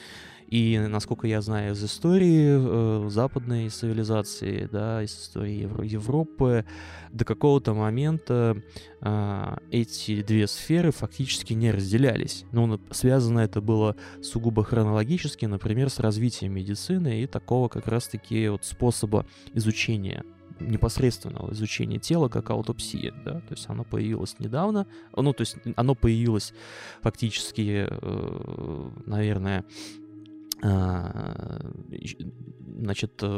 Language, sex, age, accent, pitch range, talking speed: Russian, male, 20-39, native, 105-125 Hz, 105 wpm